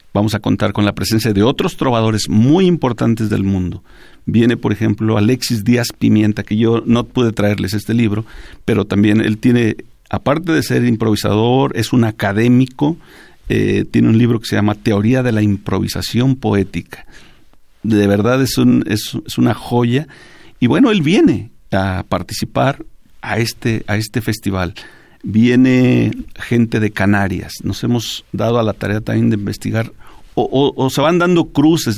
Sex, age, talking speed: male, 50-69, 165 wpm